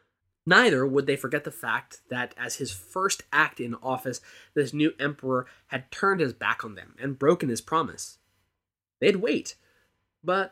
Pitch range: 115-170 Hz